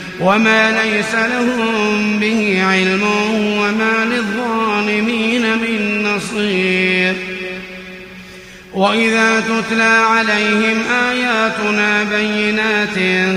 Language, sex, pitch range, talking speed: Arabic, male, 200-225 Hz, 65 wpm